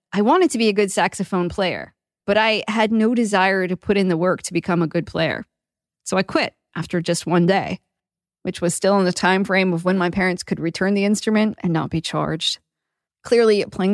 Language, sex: English, female